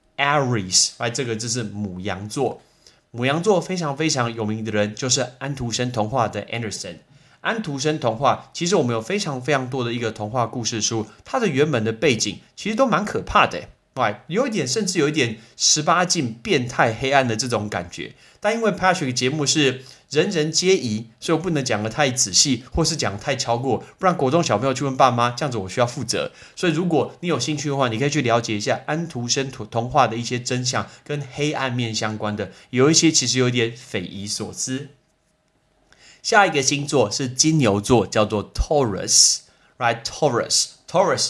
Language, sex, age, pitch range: Chinese, male, 30-49, 110-145 Hz